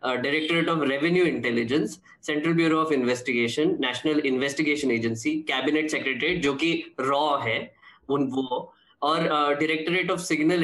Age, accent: 10-29, native